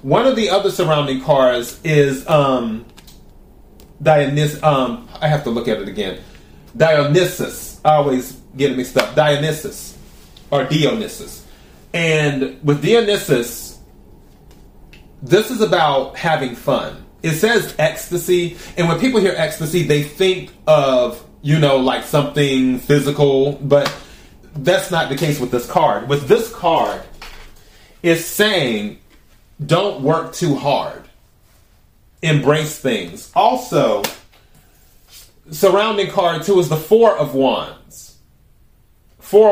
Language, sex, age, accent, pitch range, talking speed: English, male, 30-49, American, 135-170 Hz, 120 wpm